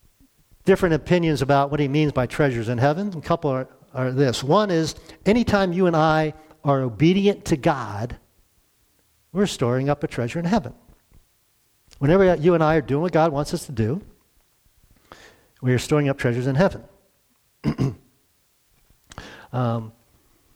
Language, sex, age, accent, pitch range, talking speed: English, male, 50-69, American, 130-180 Hz, 150 wpm